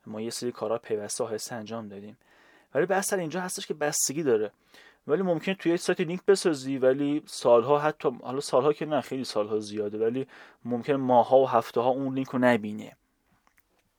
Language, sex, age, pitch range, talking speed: Persian, male, 30-49, 115-150 Hz, 175 wpm